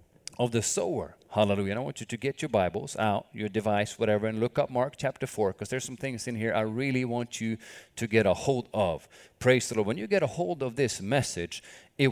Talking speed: 240 wpm